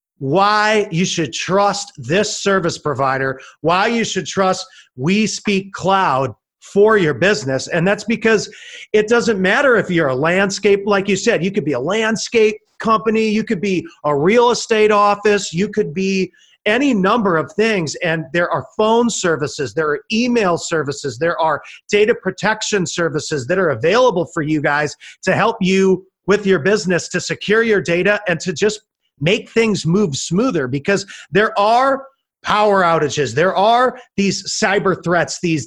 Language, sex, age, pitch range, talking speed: English, male, 40-59, 170-220 Hz, 165 wpm